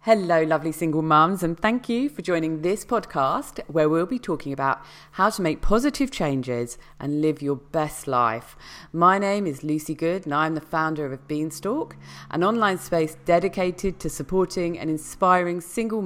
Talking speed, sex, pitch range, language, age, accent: 170 wpm, female, 140-180 Hz, English, 40-59, British